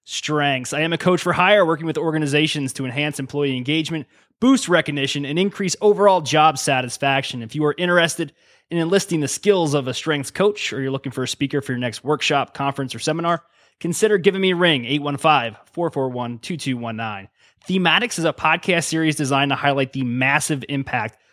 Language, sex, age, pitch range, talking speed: English, male, 20-39, 135-165 Hz, 175 wpm